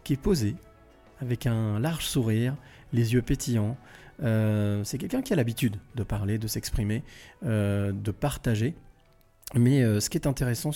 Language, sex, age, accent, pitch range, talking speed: French, male, 40-59, French, 110-135 Hz, 160 wpm